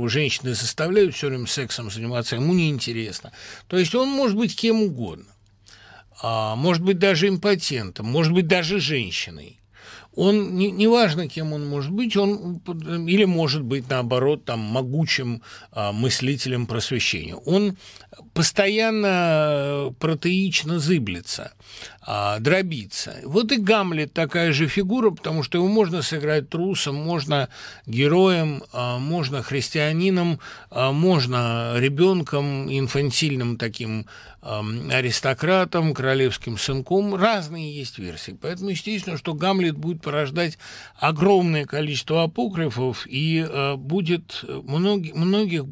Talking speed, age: 115 wpm, 60-79